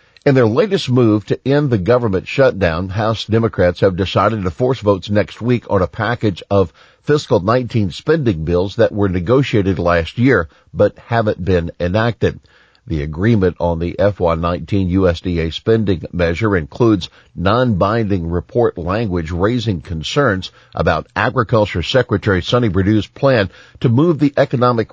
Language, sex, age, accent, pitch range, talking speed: English, male, 50-69, American, 95-120 Hz, 140 wpm